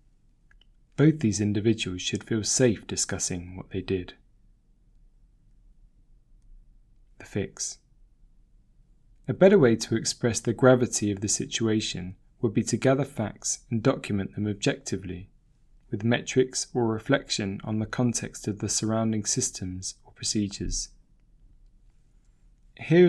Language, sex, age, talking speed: English, male, 20-39, 115 wpm